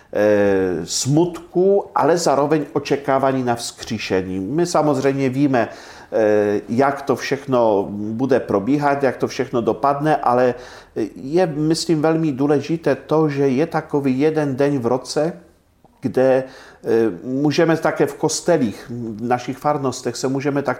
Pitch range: 120-145 Hz